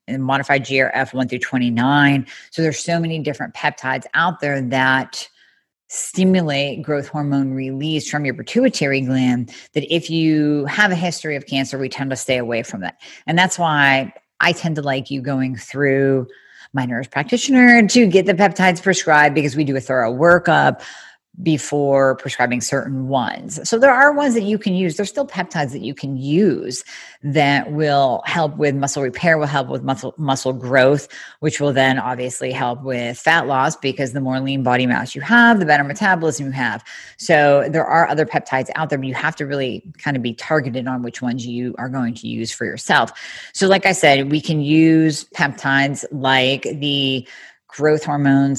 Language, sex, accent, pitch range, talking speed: English, female, American, 130-155 Hz, 185 wpm